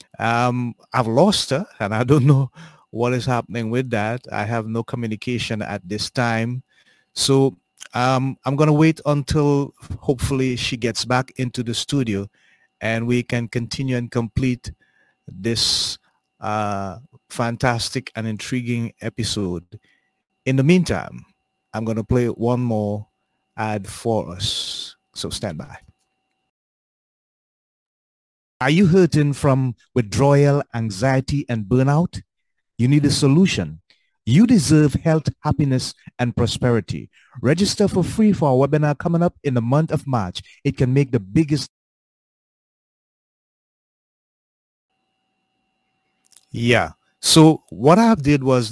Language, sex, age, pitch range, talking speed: English, male, 30-49, 115-140 Hz, 125 wpm